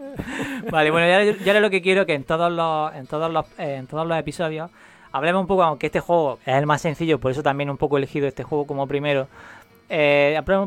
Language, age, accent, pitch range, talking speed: Spanish, 20-39, Spanish, 145-175 Hz, 235 wpm